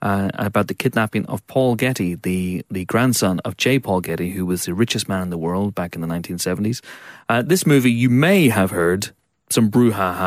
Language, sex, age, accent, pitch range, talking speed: English, male, 30-49, British, 90-115 Hz, 205 wpm